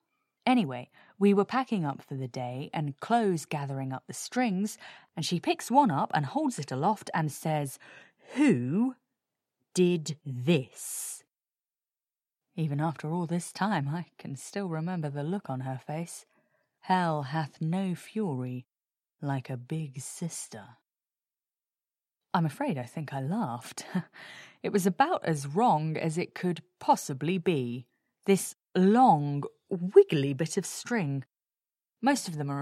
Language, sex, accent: English, female, British